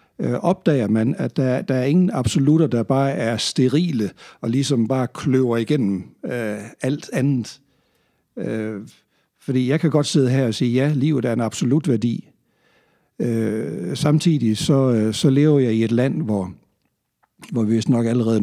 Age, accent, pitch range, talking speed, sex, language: 60-79, native, 110-140 Hz, 155 wpm, male, Danish